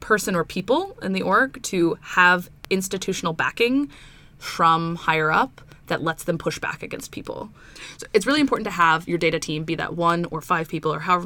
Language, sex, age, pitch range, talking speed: English, female, 20-39, 155-185 Hz, 195 wpm